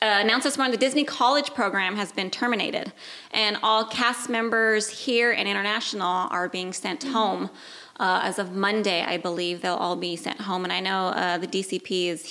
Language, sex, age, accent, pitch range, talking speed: English, female, 20-39, American, 185-230 Hz, 195 wpm